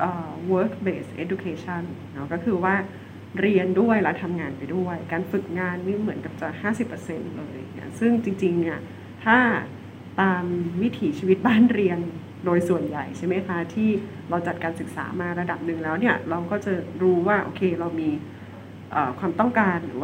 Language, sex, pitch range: Thai, female, 170-200 Hz